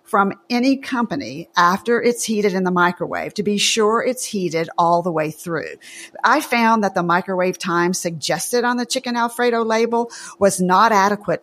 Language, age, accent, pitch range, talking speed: English, 50-69, American, 175-240 Hz, 175 wpm